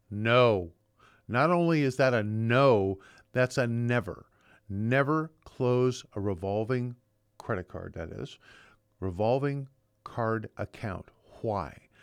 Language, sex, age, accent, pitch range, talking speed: English, male, 50-69, American, 105-145 Hz, 110 wpm